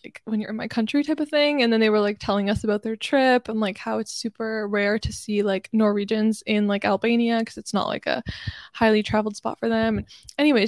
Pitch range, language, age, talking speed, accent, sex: 215-260 Hz, English, 10-29, 245 wpm, American, female